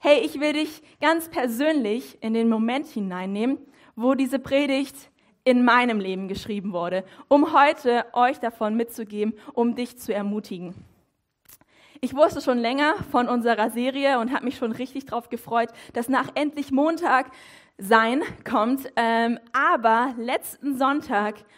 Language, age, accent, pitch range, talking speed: German, 20-39, German, 225-275 Hz, 140 wpm